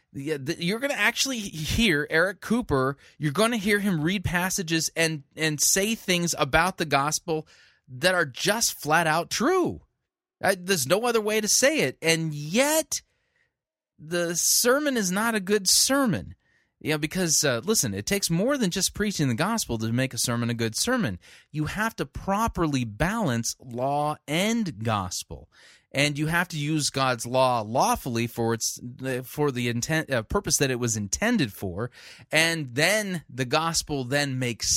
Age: 30-49